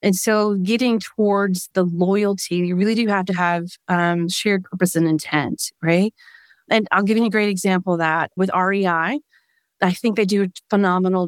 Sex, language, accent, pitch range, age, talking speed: female, English, American, 175-205 Hz, 30-49, 185 wpm